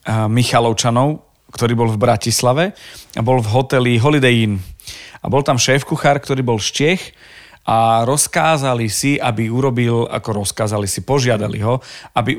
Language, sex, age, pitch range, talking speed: Slovak, male, 40-59, 115-135 Hz, 145 wpm